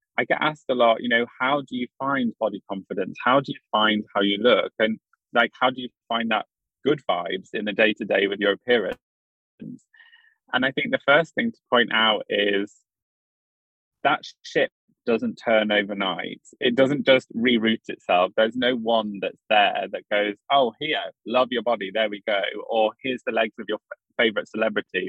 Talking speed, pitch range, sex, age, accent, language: 195 wpm, 105-130 Hz, male, 20-39, British, English